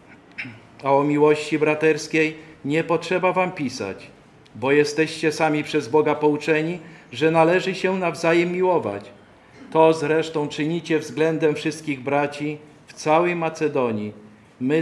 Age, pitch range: 50-69, 135-160 Hz